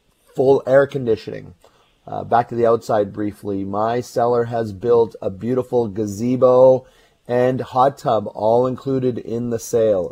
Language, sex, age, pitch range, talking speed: English, male, 30-49, 110-130 Hz, 140 wpm